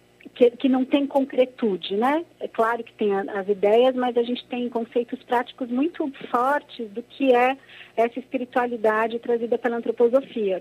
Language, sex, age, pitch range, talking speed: Portuguese, female, 40-59, 210-255 Hz, 165 wpm